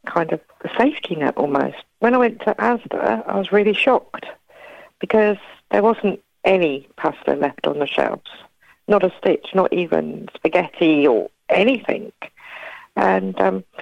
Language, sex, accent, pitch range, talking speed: English, female, British, 180-215 Hz, 150 wpm